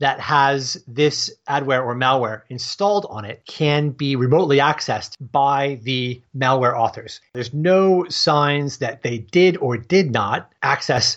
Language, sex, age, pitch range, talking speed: English, male, 30-49, 120-155 Hz, 145 wpm